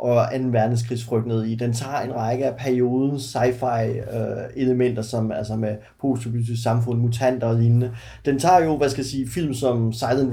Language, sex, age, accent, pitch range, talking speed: Danish, male, 30-49, native, 115-140 Hz, 175 wpm